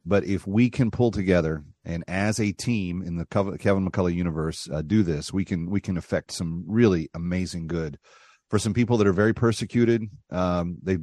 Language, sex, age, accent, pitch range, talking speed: English, male, 40-59, American, 85-105 Hz, 195 wpm